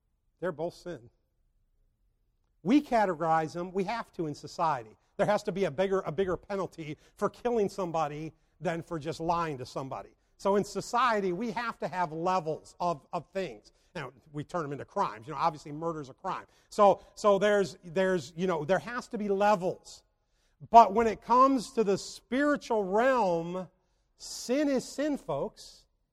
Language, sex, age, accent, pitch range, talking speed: English, male, 50-69, American, 155-210 Hz, 170 wpm